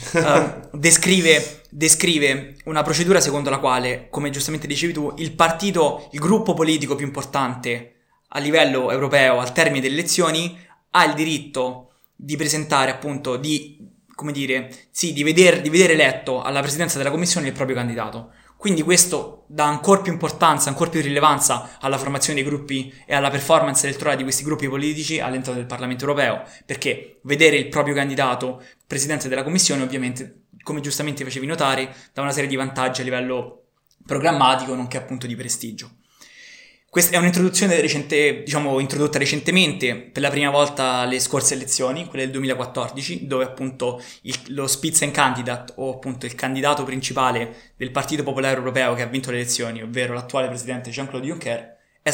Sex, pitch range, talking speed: male, 130-150 Hz, 160 wpm